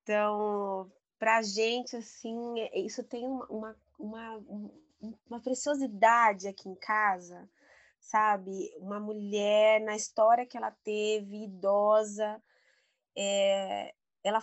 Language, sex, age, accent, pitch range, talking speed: Portuguese, female, 20-39, Brazilian, 200-230 Hz, 90 wpm